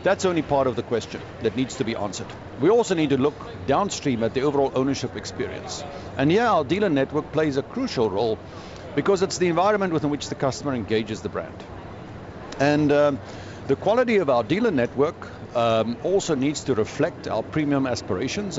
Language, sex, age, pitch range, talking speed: English, male, 50-69, 115-155 Hz, 185 wpm